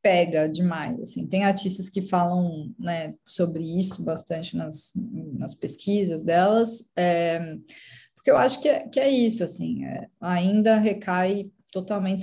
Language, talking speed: Portuguese, 140 wpm